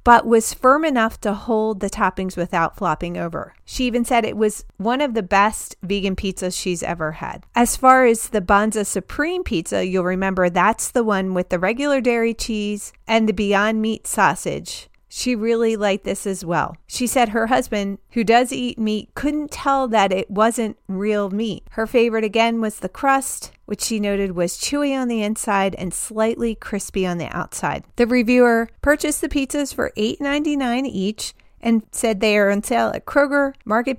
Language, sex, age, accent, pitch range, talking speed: English, female, 40-59, American, 195-240 Hz, 185 wpm